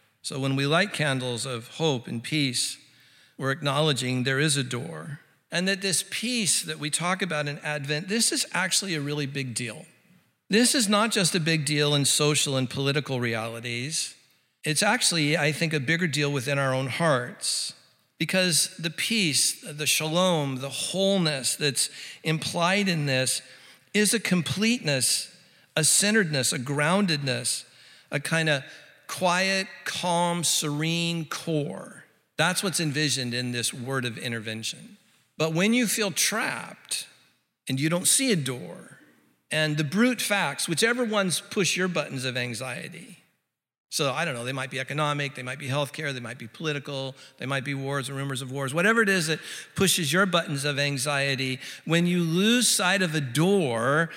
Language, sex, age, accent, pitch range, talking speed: English, male, 50-69, American, 135-185 Hz, 165 wpm